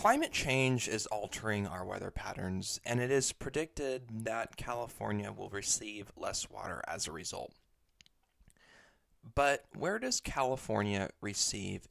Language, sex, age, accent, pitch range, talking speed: English, male, 20-39, American, 95-130 Hz, 125 wpm